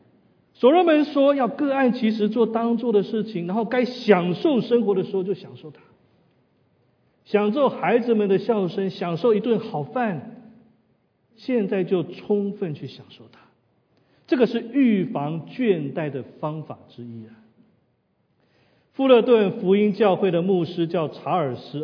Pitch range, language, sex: 160-225 Hz, Chinese, male